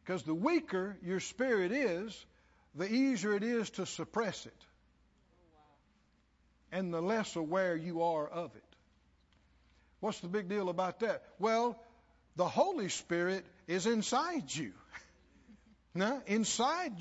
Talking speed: 125 wpm